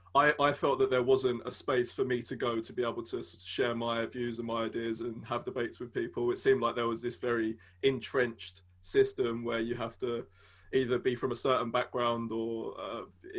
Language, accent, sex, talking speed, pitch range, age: English, British, male, 225 wpm, 110-125 Hz, 20-39